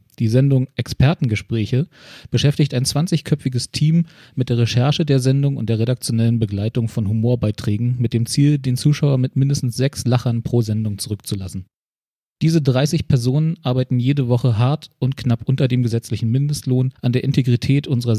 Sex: male